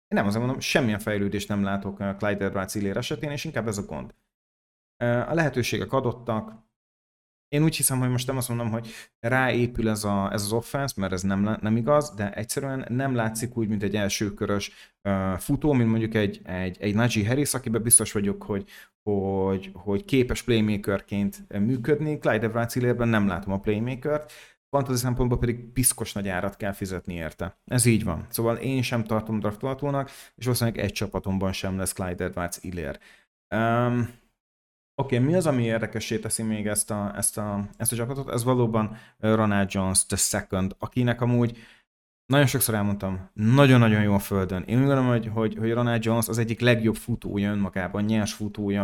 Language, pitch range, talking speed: Hungarian, 100-125 Hz, 170 wpm